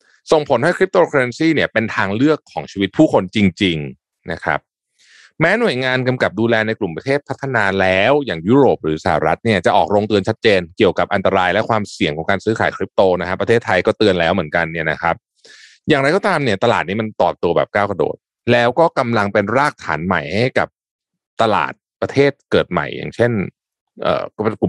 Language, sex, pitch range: Thai, male, 90-130 Hz